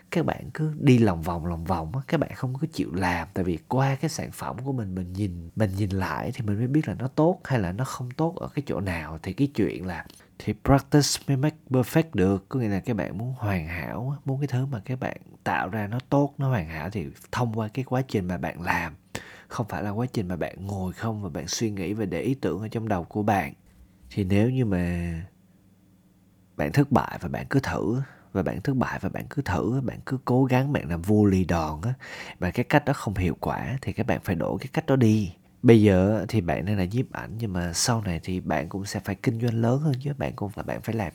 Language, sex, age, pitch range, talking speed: Vietnamese, male, 20-39, 95-130 Hz, 260 wpm